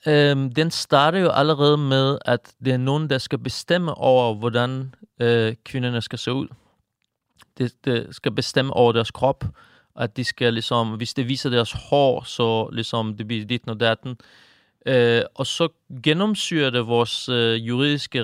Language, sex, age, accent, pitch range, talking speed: Danish, male, 30-49, native, 120-145 Hz, 180 wpm